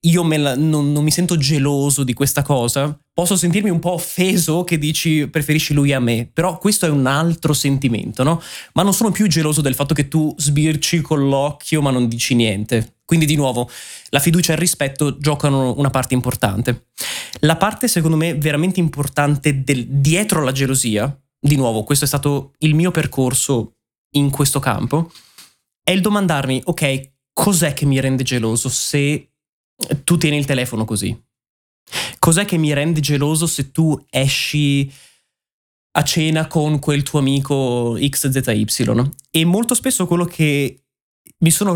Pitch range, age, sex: 135-170 Hz, 20-39, male